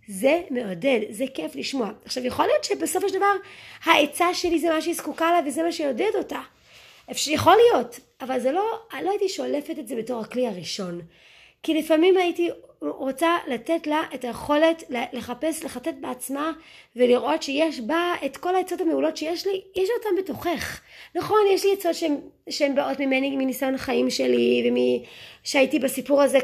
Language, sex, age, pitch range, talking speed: Hebrew, female, 20-39, 235-325 Hz, 165 wpm